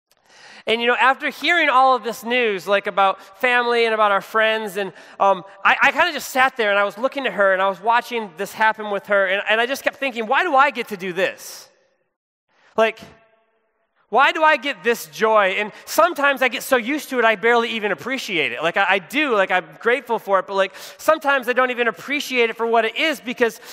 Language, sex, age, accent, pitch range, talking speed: English, male, 20-39, American, 205-275 Hz, 235 wpm